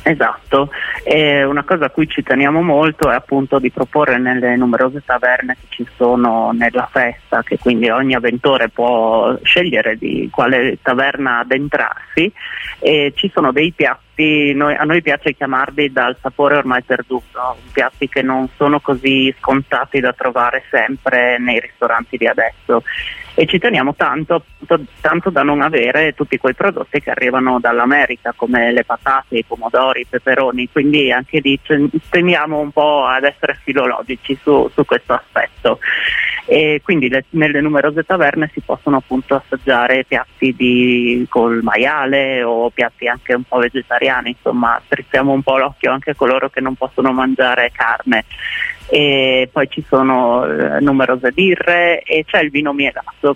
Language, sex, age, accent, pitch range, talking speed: Italian, male, 30-49, native, 125-145 Hz, 150 wpm